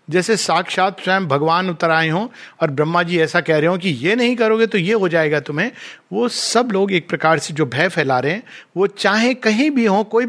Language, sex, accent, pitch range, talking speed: Hindi, male, native, 160-225 Hz, 235 wpm